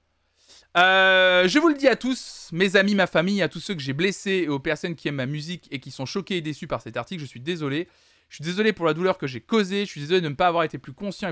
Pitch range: 140-195 Hz